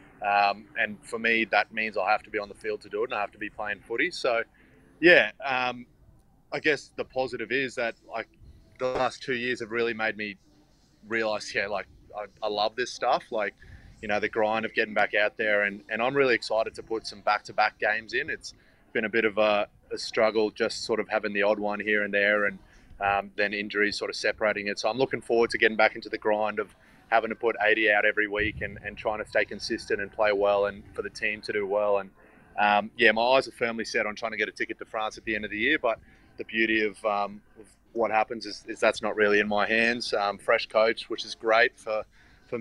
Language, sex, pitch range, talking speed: English, male, 105-115 Hz, 250 wpm